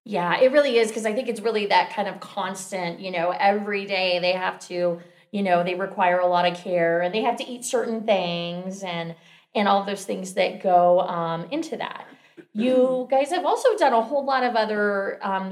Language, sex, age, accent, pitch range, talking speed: English, female, 30-49, American, 195-245 Hz, 215 wpm